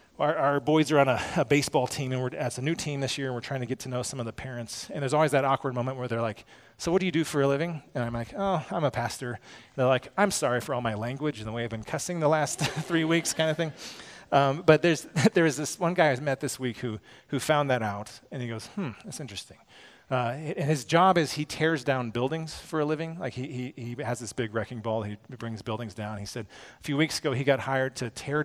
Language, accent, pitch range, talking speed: English, American, 120-150 Hz, 275 wpm